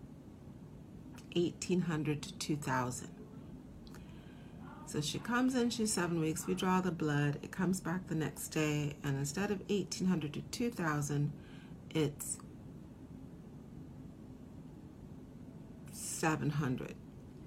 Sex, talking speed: female, 95 wpm